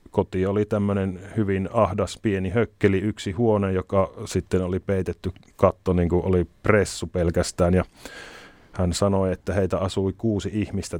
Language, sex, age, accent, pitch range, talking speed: Finnish, male, 30-49, native, 90-100 Hz, 140 wpm